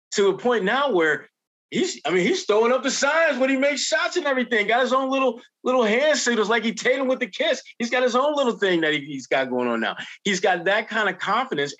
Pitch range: 150-225 Hz